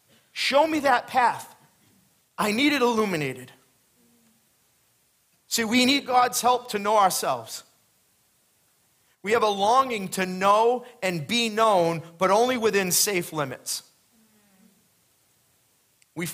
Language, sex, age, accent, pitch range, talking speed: English, male, 40-59, American, 135-195 Hz, 115 wpm